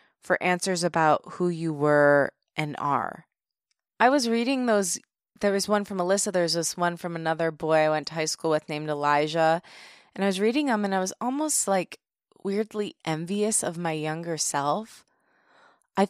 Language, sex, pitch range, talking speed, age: English, female, 155-200 Hz, 180 wpm, 20-39